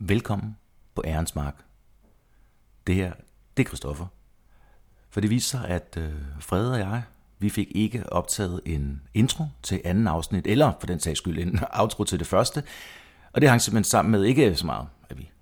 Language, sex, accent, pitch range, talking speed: Danish, male, native, 80-105 Hz, 180 wpm